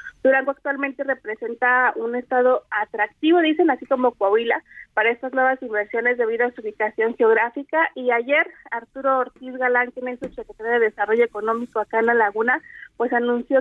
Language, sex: Spanish, female